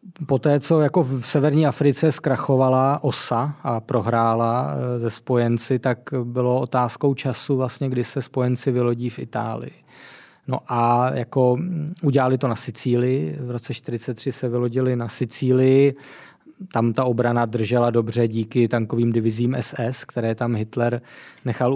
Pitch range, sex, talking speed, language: 120-130 Hz, male, 140 wpm, Czech